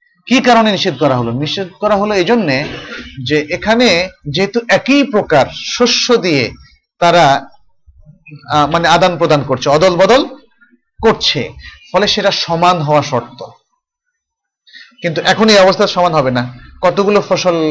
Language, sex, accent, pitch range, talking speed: Bengali, male, native, 145-210 Hz, 65 wpm